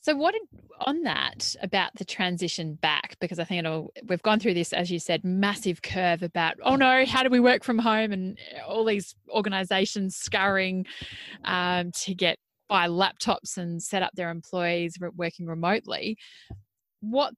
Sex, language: female, English